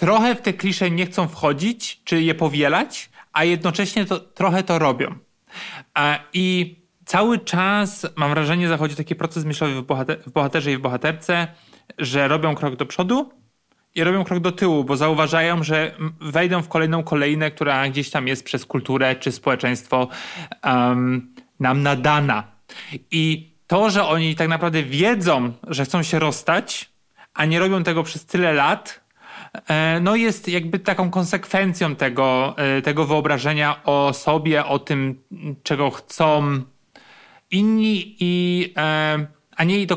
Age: 30-49